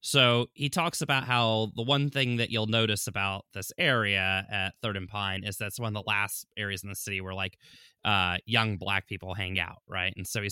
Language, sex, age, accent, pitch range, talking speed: English, male, 20-39, American, 100-130 Hz, 230 wpm